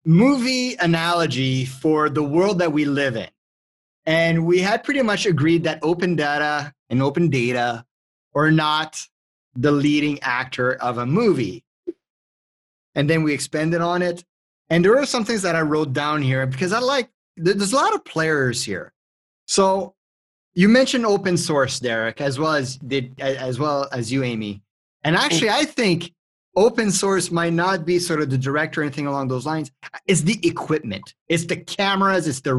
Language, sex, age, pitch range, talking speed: English, male, 30-49, 130-170 Hz, 175 wpm